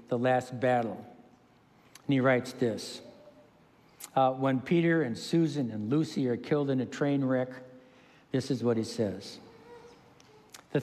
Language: English